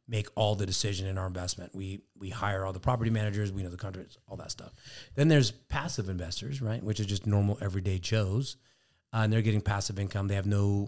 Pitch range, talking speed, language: 100-115 Hz, 225 wpm, English